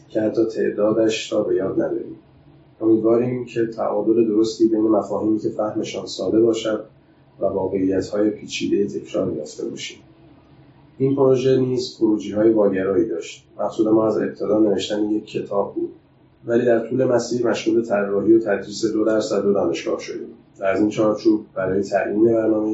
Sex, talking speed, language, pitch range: male, 150 wpm, Persian, 100-120 Hz